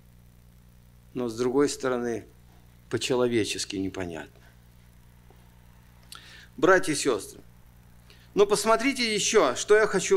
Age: 50-69